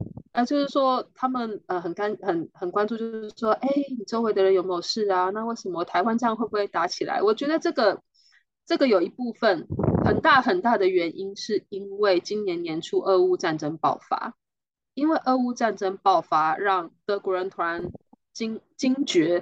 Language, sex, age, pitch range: Chinese, female, 20-39, 185-260 Hz